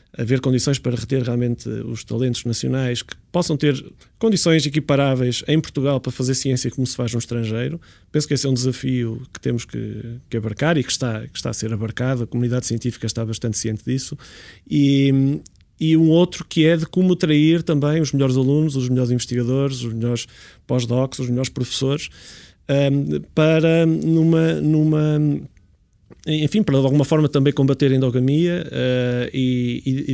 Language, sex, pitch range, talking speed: English, male, 120-145 Hz, 175 wpm